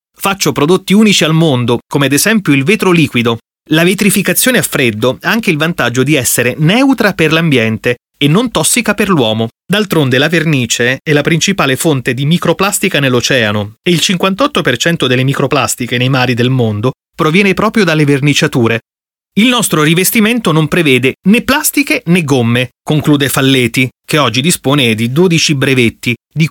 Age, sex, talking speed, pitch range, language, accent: 30-49, male, 160 wpm, 125-175 Hz, Italian, native